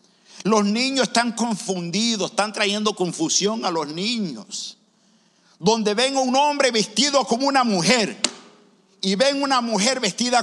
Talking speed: 130 wpm